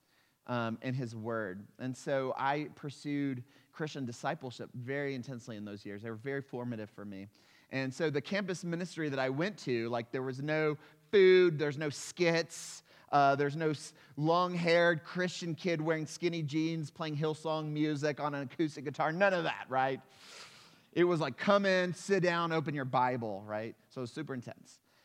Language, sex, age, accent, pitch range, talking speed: English, male, 30-49, American, 130-170 Hz, 170 wpm